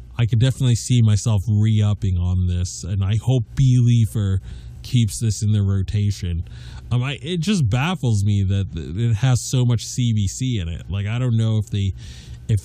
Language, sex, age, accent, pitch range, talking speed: English, male, 20-39, American, 105-130 Hz, 185 wpm